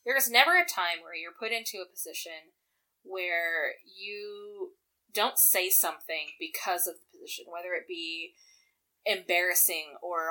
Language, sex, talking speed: English, female, 145 wpm